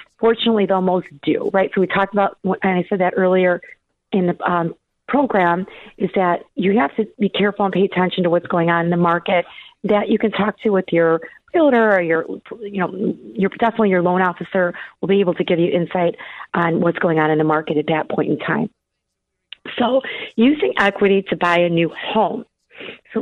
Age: 40-59